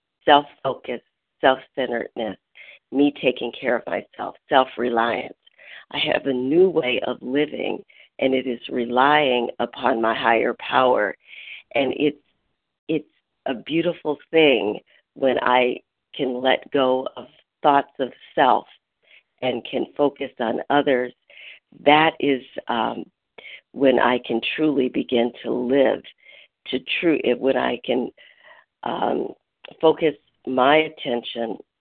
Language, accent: English, American